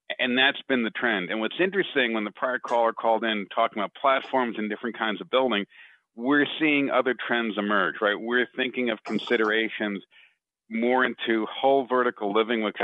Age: 40-59